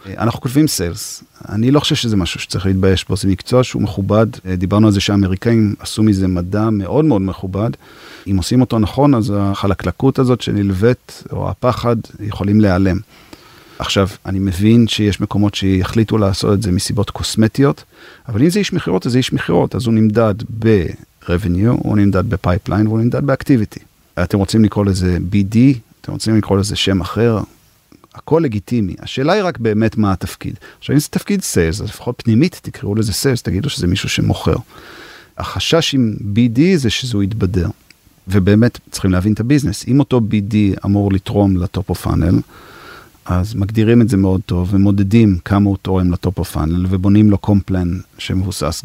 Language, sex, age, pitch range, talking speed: Hebrew, male, 40-59, 95-115 Hz, 160 wpm